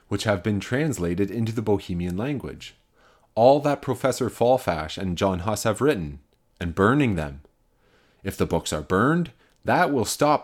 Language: English